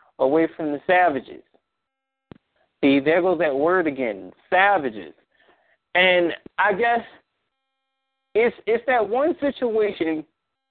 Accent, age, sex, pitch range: American, 30-49, male, 150-235 Hz